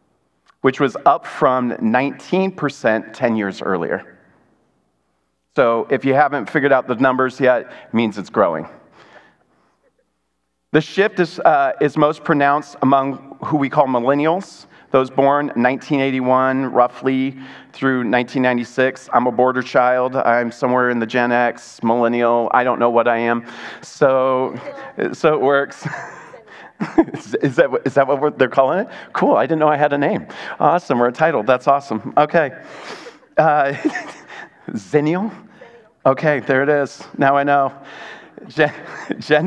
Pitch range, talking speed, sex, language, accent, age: 120-150 Hz, 140 wpm, male, English, American, 40-59